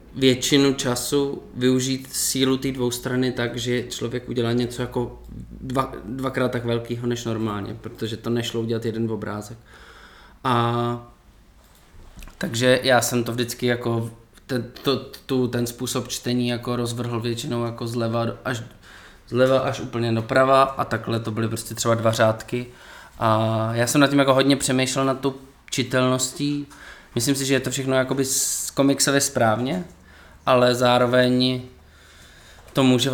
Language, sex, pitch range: Czech, male, 110-130 Hz